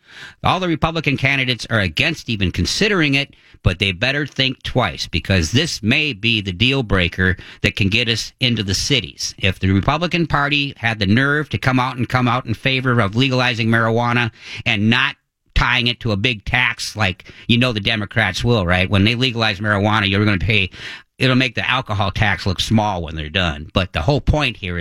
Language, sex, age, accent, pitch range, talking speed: English, male, 50-69, American, 95-125 Hz, 205 wpm